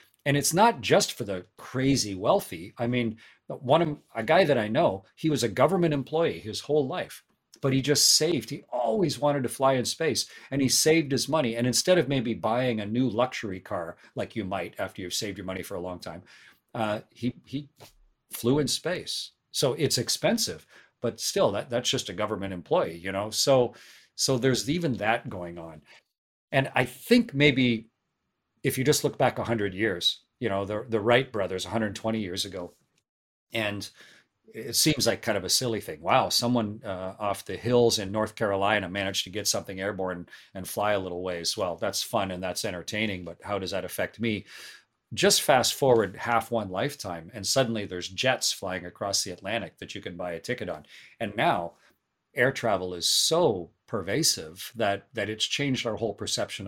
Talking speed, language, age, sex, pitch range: 195 wpm, English, 40-59, male, 95-130 Hz